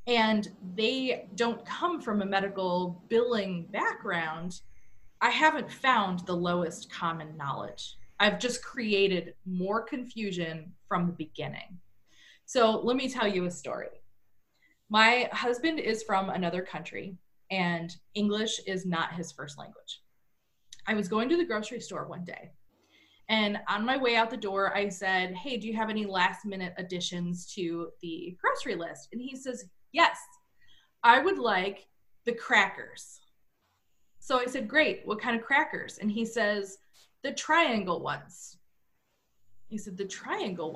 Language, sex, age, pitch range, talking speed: English, female, 20-39, 180-235 Hz, 150 wpm